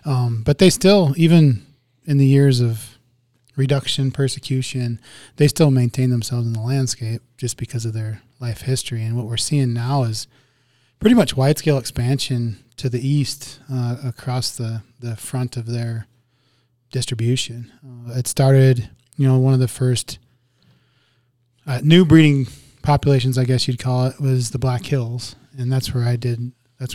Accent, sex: American, male